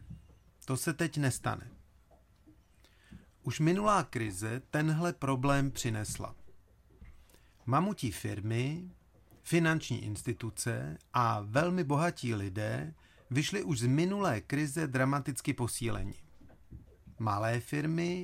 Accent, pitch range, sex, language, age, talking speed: native, 110-155 Hz, male, Czech, 40-59, 90 wpm